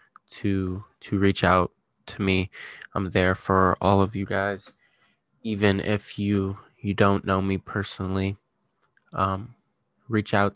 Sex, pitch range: male, 90-100 Hz